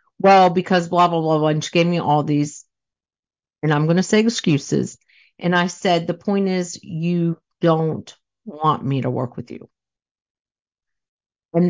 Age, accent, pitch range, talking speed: 50-69, American, 155-195 Hz, 170 wpm